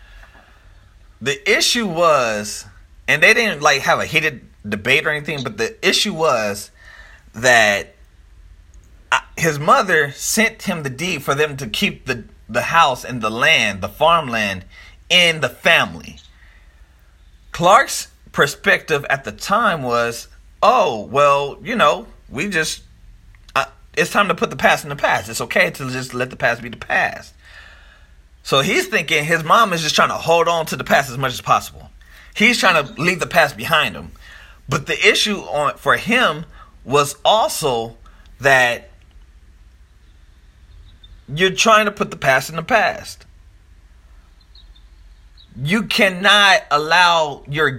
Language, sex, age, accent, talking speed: English, male, 30-49, American, 150 wpm